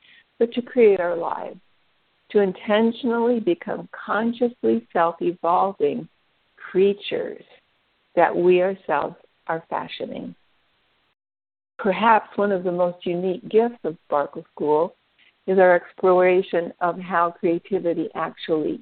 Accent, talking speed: American, 105 wpm